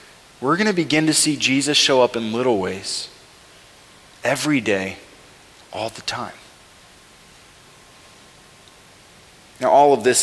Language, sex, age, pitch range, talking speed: English, male, 30-49, 140-195 Hz, 125 wpm